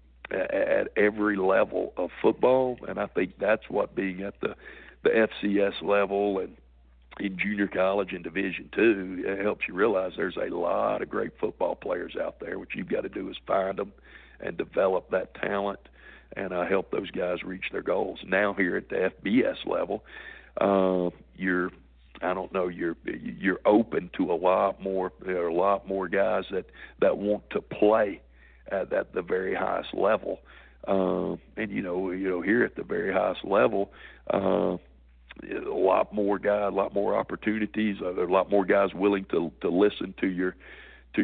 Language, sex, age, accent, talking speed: English, male, 60-79, American, 180 wpm